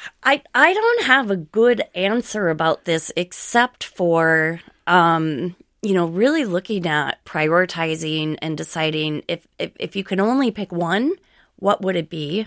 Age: 20-39